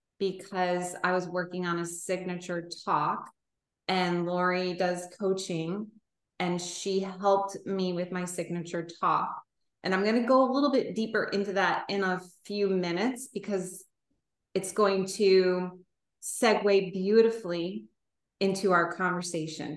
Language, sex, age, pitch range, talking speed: English, female, 20-39, 175-215 Hz, 135 wpm